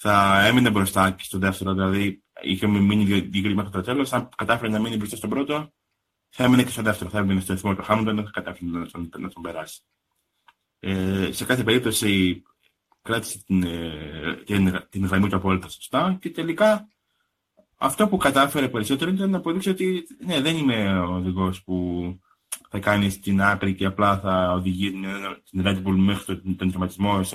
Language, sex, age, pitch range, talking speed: Greek, male, 20-39, 95-125 Hz, 175 wpm